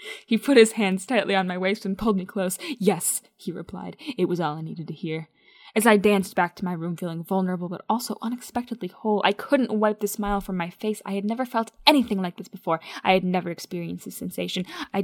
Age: 10-29